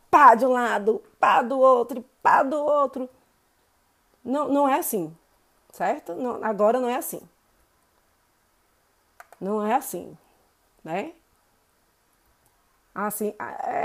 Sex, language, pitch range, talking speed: female, Portuguese, 205-285 Hz, 115 wpm